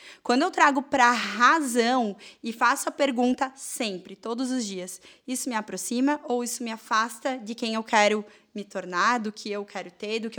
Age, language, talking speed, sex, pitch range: 10-29, Portuguese, 195 wpm, female, 225-280 Hz